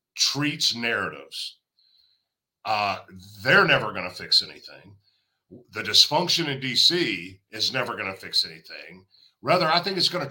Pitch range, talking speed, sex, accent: 110-150 Hz, 130 wpm, male, American